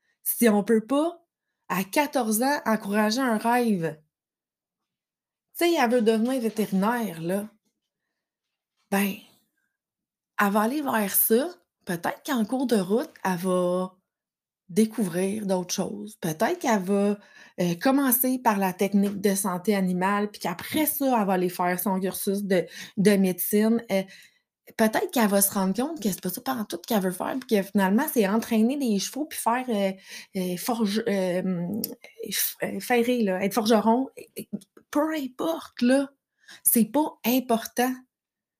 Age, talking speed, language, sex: 20-39, 155 wpm, French, female